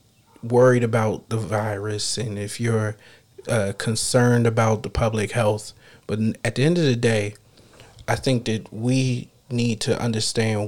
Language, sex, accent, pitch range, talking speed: English, male, American, 110-120 Hz, 150 wpm